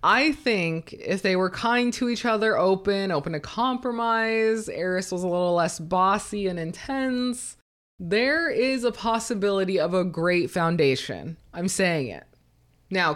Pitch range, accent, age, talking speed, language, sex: 170-225 Hz, American, 20-39, 150 wpm, English, female